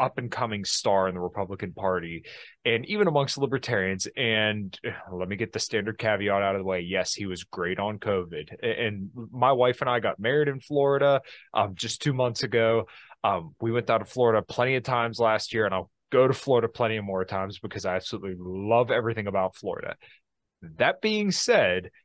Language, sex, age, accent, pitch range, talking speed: English, male, 20-39, American, 100-135 Hz, 195 wpm